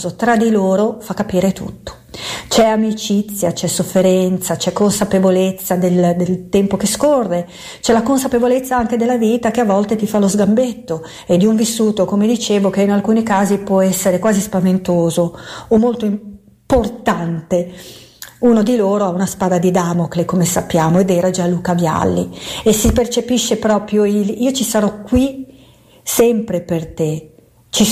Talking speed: 160 wpm